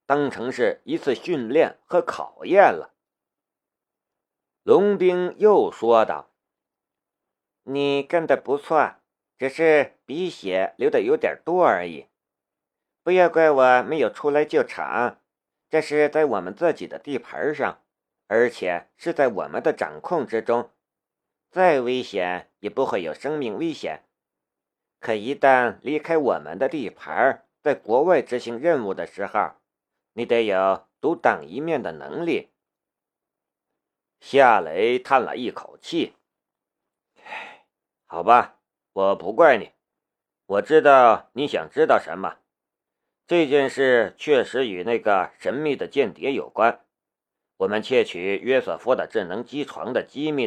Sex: male